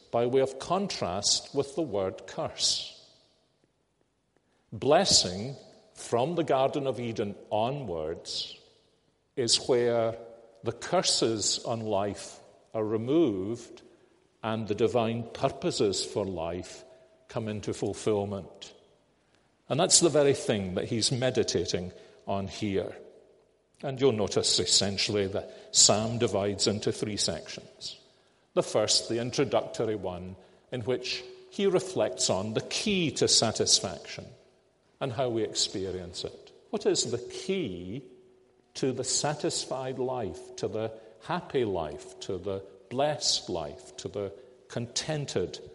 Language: English